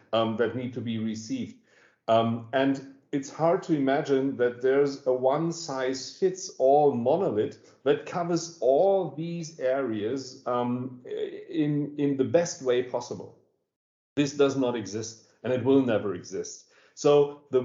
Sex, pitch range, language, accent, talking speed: male, 125-155 Hz, English, German, 135 wpm